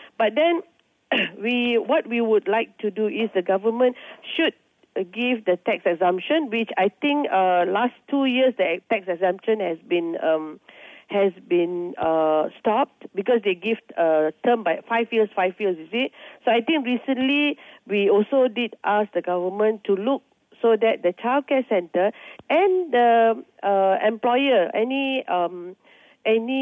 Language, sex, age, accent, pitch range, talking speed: English, female, 40-59, Malaysian, 200-275 Hz, 155 wpm